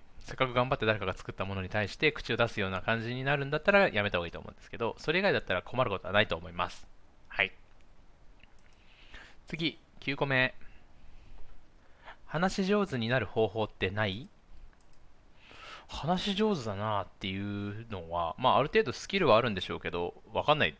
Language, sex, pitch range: Japanese, male, 95-130 Hz